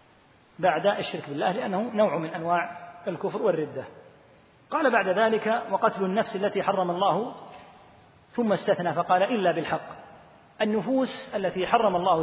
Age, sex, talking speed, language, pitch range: 40-59, male, 130 wpm, Arabic, 170-225 Hz